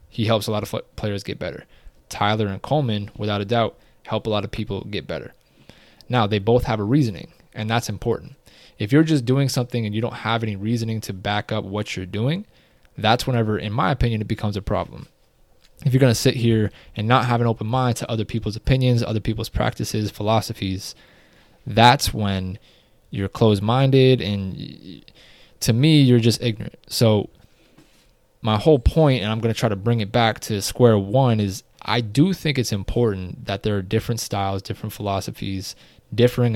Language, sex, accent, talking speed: English, male, American, 190 wpm